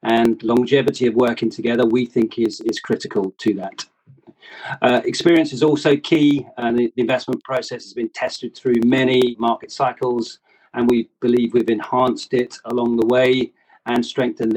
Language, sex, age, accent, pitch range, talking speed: English, male, 40-59, British, 115-130 Hz, 165 wpm